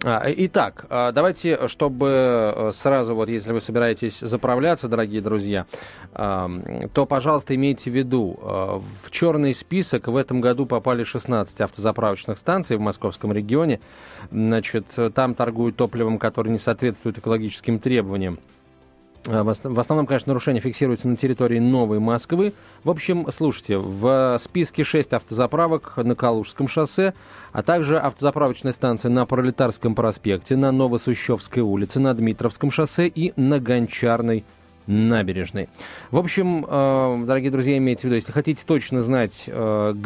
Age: 20-39